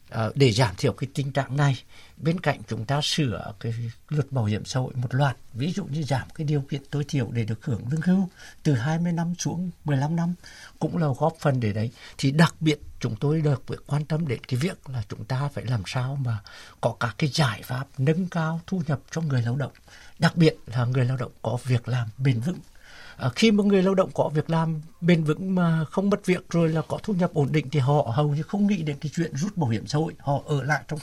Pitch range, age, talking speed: 125-160 Hz, 60-79, 250 wpm